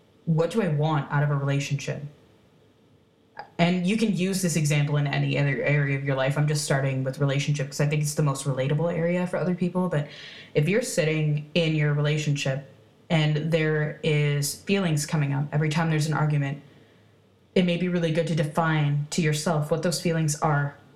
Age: 20-39